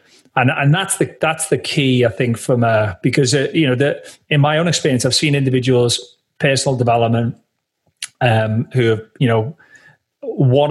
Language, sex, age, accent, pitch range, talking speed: English, male, 40-59, British, 110-135 Hz, 175 wpm